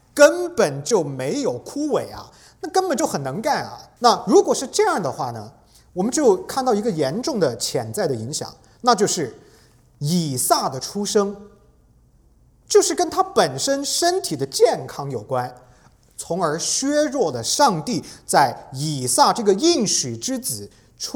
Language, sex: English, male